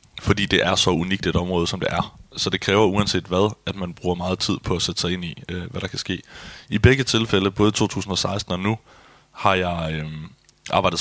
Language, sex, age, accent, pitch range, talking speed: Danish, male, 20-39, native, 90-100 Hz, 235 wpm